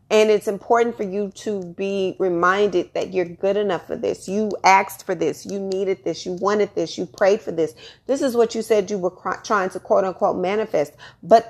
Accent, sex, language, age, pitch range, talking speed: American, female, English, 30-49, 185-225 Hz, 215 wpm